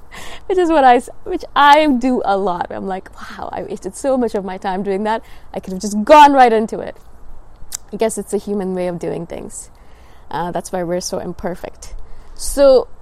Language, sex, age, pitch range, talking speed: English, female, 20-39, 185-230 Hz, 200 wpm